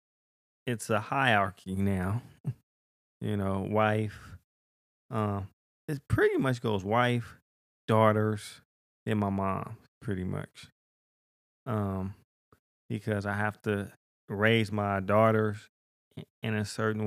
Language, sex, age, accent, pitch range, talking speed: English, male, 20-39, American, 100-110 Hz, 110 wpm